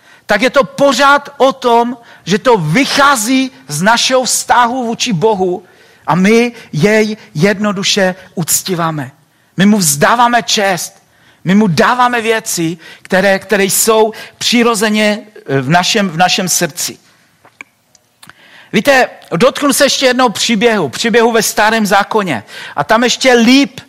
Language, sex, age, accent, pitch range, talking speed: Czech, male, 50-69, native, 195-240 Hz, 125 wpm